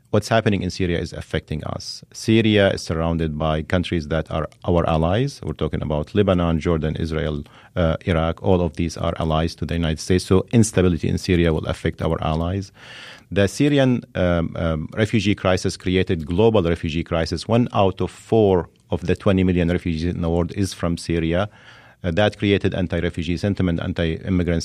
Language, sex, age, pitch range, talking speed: English, male, 40-59, 85-105 Hz, 175 wpm